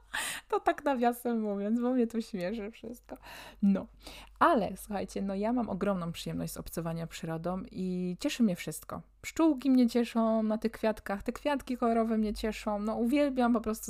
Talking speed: 165 wpm